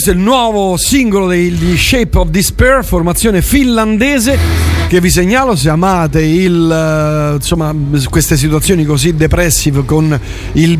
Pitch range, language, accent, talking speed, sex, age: 155-205 Hz, Italian, native, 120 wpm, male, 40-59